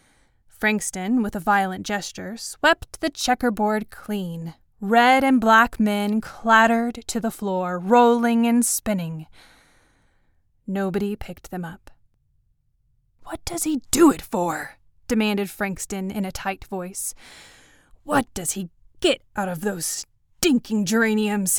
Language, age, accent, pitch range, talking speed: English, 20-39, American, 190-235 Hz, 125 wpm